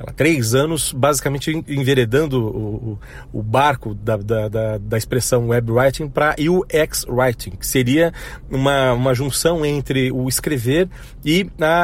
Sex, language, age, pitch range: male, Portuguese, 40-59, 125-165 Hz